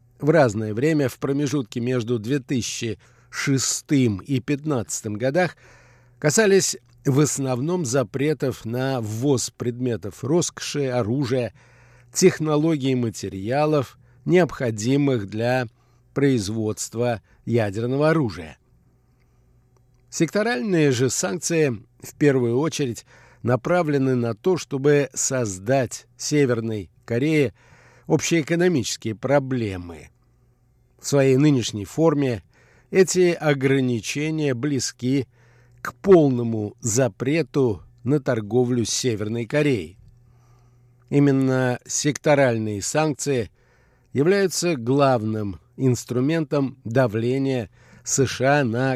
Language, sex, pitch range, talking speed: Russian, male, 120-145 Hz, 80 wpm